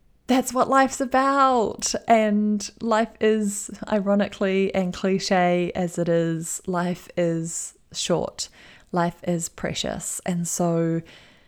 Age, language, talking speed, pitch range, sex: 20-39, English, 110 wpm, 175-205 Hz, female